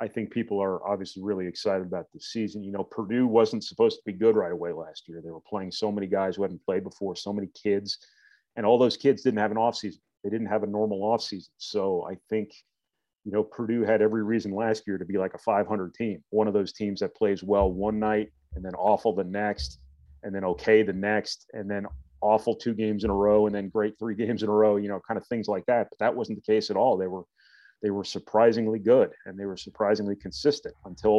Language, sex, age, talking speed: English, male, 30-49, 250 wpm